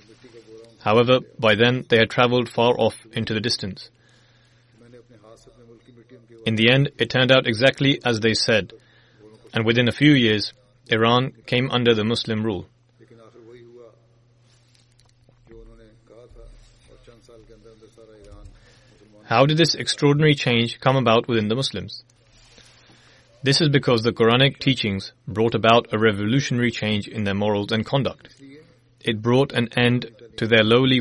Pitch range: 110-125 Hz